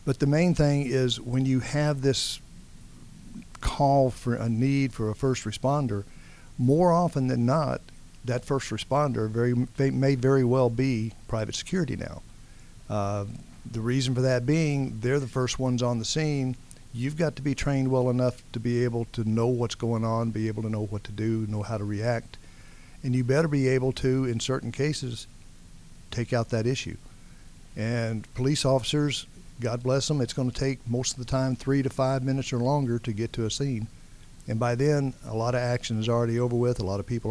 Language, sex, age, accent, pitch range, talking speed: English, male, 50-69, American, 115-130 Hz, 200 wpm